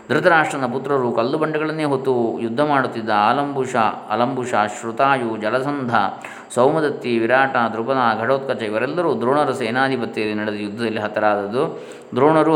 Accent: native